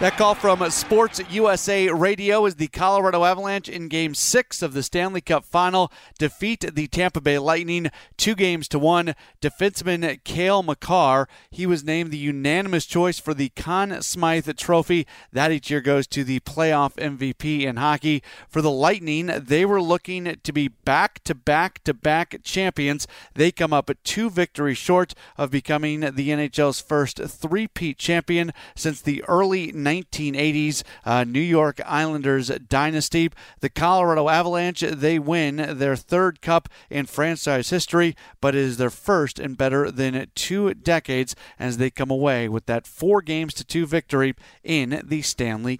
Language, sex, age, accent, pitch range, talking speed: English, male, 40-59, American, 145-175 Hz, 155 wpm